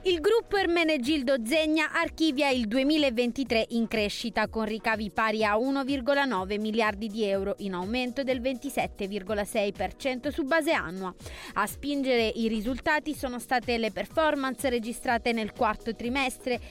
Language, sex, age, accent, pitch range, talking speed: Italian, female, 20-39, native, 220-275 Hz, 135 wpm